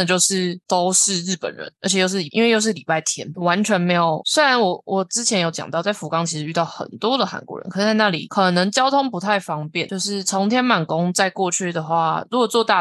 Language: Chinese